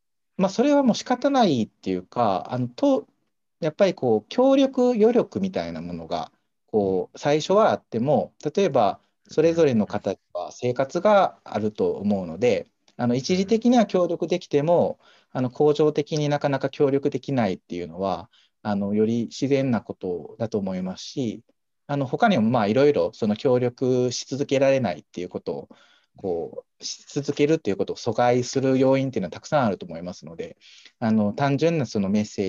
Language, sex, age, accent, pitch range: Japanese, male, 40-59, native, 110-175 Hz